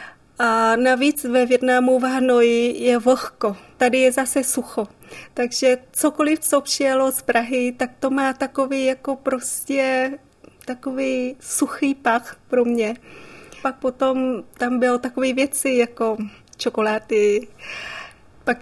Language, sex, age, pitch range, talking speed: Czech, female, 20-39, 230-255 Hz, 120 wpm